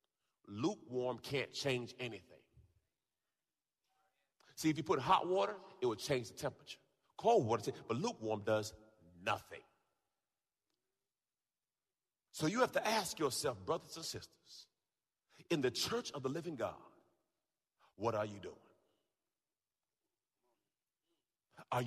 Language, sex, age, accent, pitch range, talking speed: English, male, 40-59, American, 110-145 Hz, 115 wpm